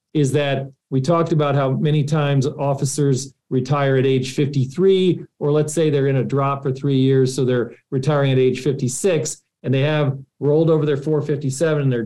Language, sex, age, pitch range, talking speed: English, male, 40-59, 130-160 Hz, 190 wpm